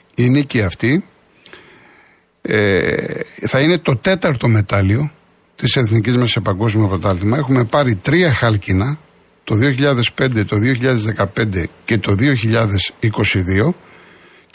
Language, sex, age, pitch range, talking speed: Greek, male, 60-79, 110-155 Hz, 100 wpm